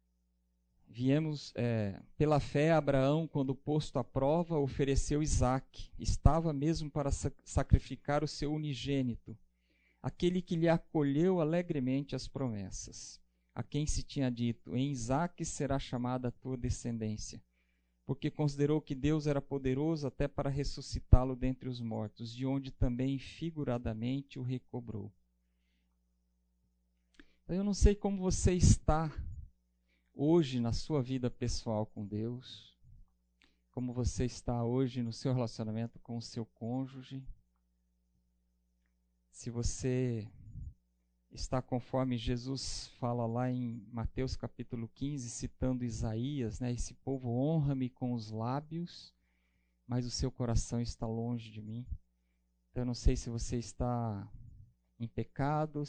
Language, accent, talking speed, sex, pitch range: Portuguese, Brazilian, 125 wpm, male, 105-135 Hz